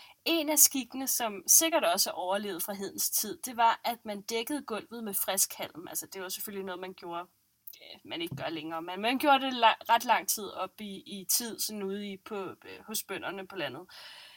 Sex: female